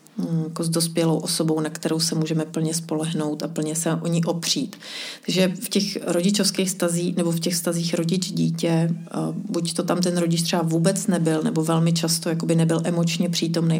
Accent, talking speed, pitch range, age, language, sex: native, 175 wpm, 165-185 Hz, 30-49, Czech, female